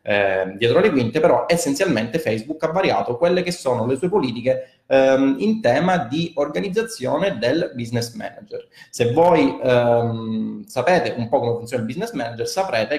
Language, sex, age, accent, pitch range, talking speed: Italian, male, 20-39, native, 120-180 Hz, 160 wpm